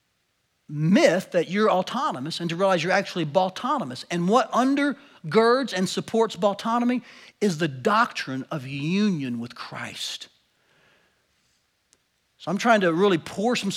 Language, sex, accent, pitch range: English, male, American, 160-200 Hz